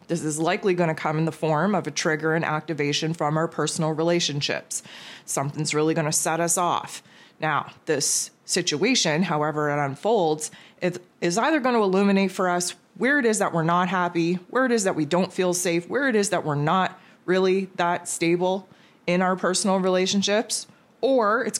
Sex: female